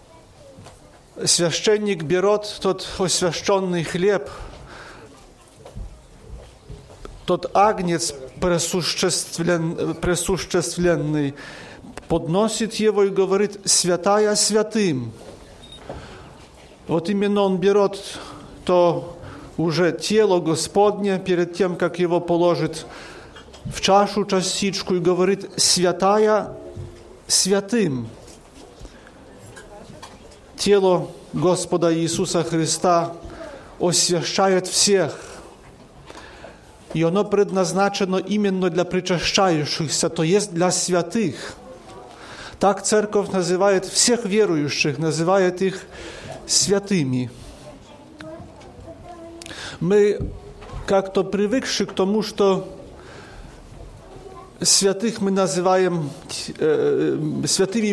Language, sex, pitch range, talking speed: Polish, male, 175-200 Hz, 65 wpm